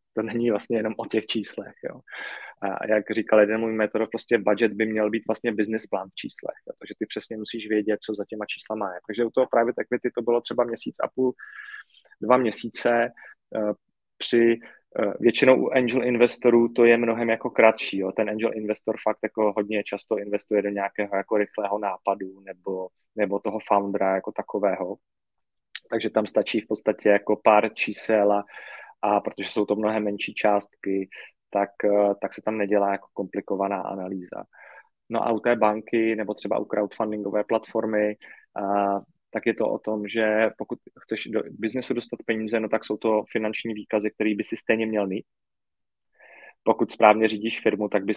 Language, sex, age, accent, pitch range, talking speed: Czech, male, 20-39, native, 105-115 Hz, 175 wpm